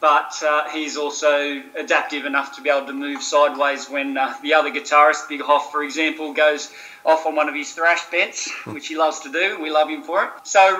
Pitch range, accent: 150-170 Hz, Australian